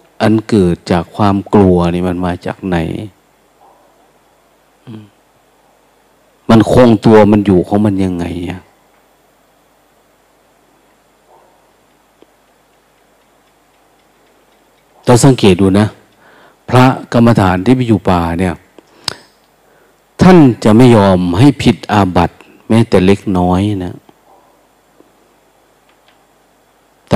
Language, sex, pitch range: Thai, male, 95-110 Hz